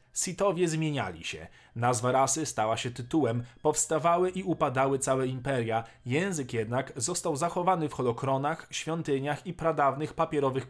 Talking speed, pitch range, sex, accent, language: 130 wpm, 125-155 Hz, male, native, Polish